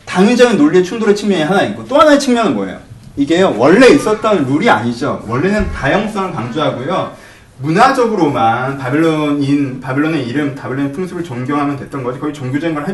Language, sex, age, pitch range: Korean, male, 30-49, 120-185 Hz